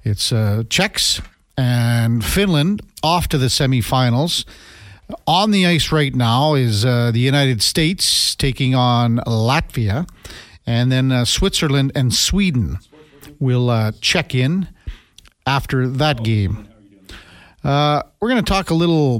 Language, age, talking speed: English, 50-69, 130 wpm